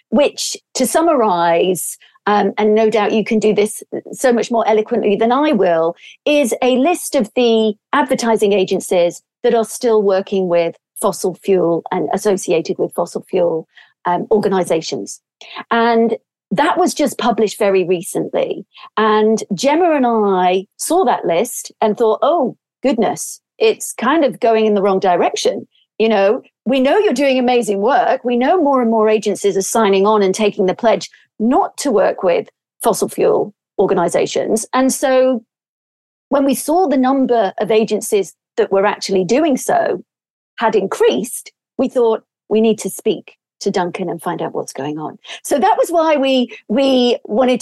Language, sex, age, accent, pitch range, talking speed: English, female, 40-59, British, 200-260 Hz, 165 wpm